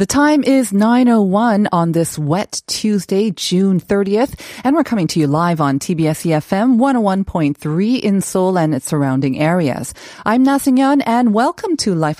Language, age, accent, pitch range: Korean, 40-59, American, 155-235 Hz